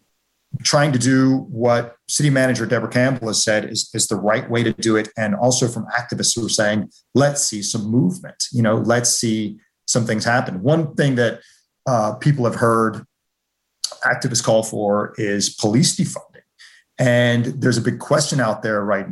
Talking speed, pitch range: 180 wpm, 105-125 Hz